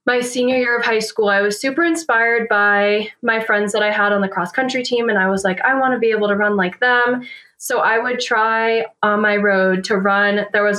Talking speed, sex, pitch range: 250 wpm, female, 190-240 Hz